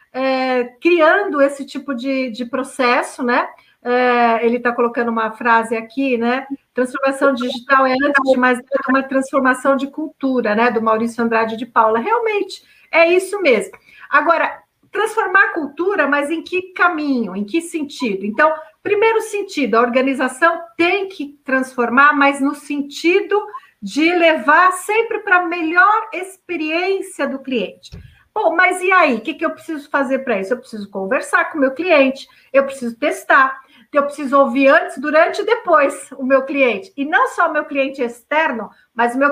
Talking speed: 165 wpm